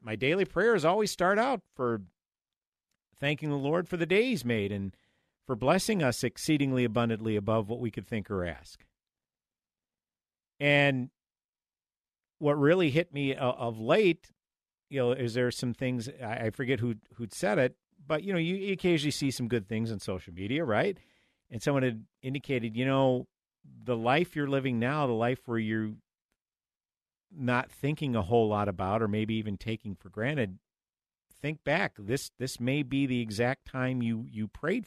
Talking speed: 170 wpm